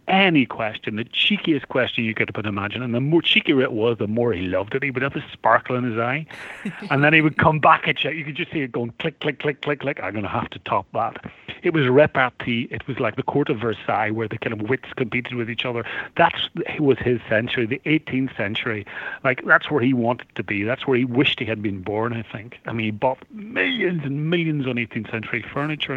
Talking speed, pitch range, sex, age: 245 wpm, 110-140 Hz, male, 40-59